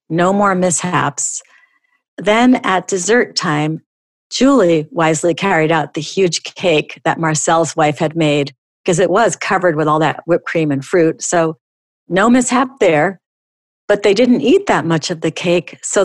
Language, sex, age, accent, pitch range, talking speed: English, female, 50-69, American, 155-195 Hz, 165 wpm